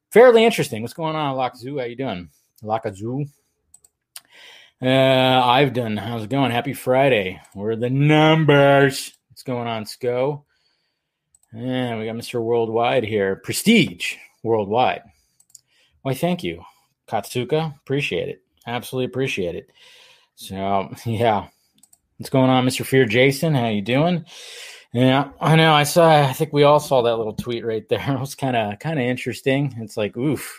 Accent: American